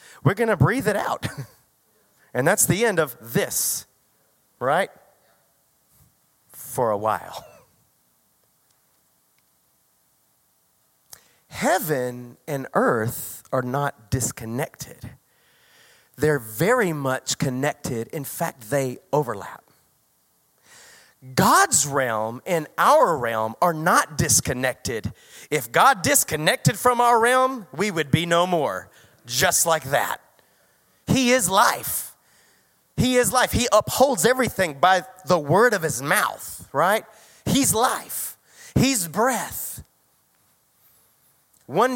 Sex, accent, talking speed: male, American, 105 wpm